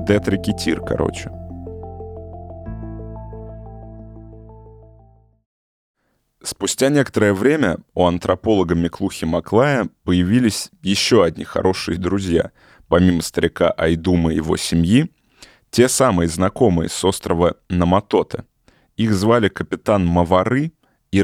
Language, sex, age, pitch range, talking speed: Russian, male, 20-39, 90-110 Hz, 90 wpm